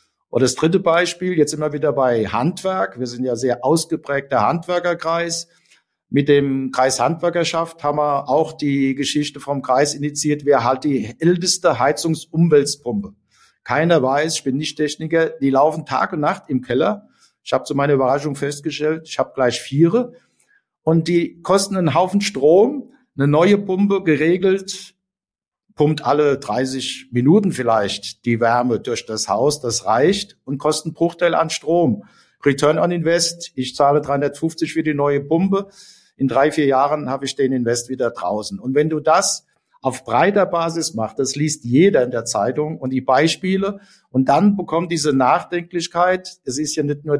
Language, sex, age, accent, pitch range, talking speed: German, male, 50-69, German, 135-170 Hz, 165 wpm